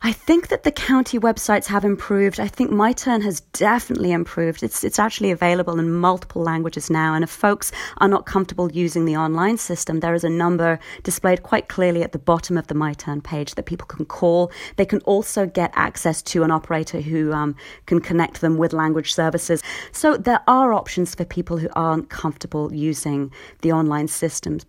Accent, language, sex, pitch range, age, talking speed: British, English, female, 170-205 Hz, 30-49, 190 wpm